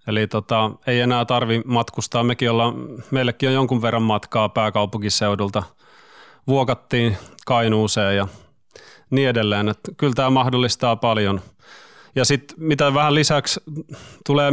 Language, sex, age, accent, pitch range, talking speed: Finnish, male, 30-49, native, 110-130 Hz, 115 wpm